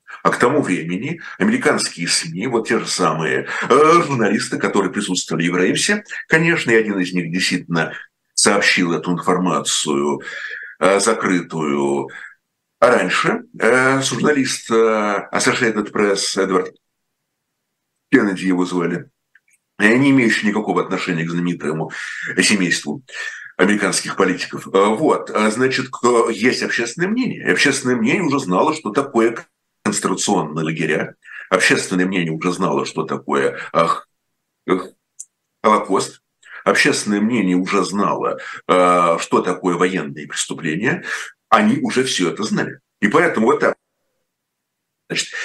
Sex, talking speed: male, 115 wpm